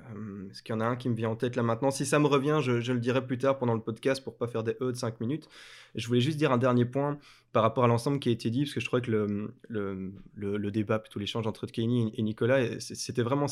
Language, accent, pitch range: French, French, 110-135 Hz